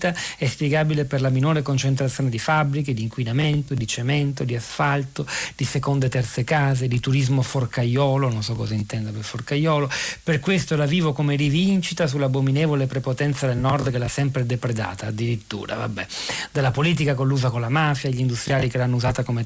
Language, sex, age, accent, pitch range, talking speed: Italian, male, 40-59, native, 125-145 Hz, 175 wpm